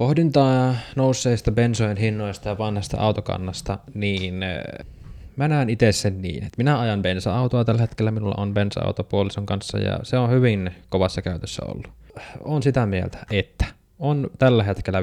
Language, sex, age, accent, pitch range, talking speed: Finnish, male, 20-39, native, 95-125 Hz, 150 wpm